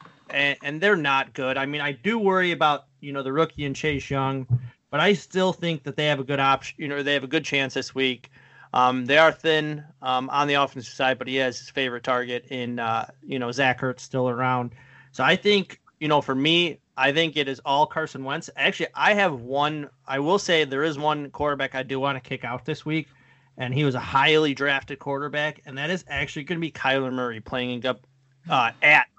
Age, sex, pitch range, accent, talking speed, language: 30-49, male, 130-155 Hz, American, 230 wpm, English